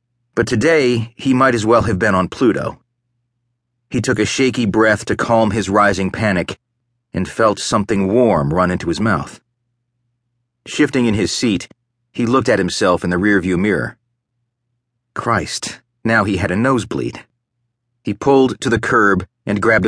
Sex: male